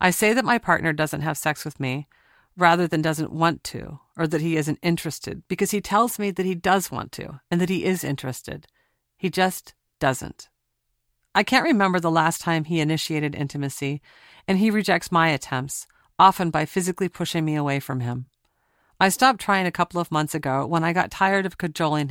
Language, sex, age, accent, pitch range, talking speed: English, female, 40-59, American, 150-190 Hz, 200 wpm